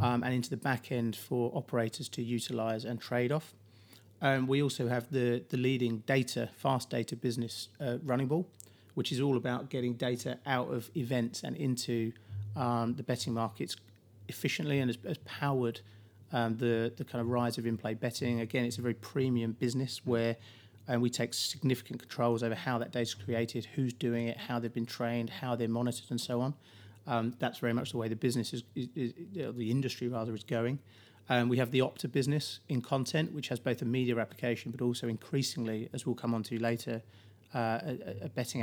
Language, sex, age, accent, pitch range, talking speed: English, male, 30-49, British, 115-130 Hz, 200 wpm